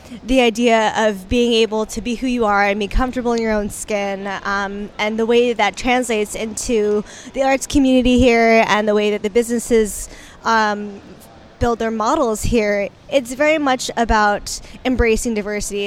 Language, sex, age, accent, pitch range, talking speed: English, female, 20-39, American, 215-255 Hz, 170 wpm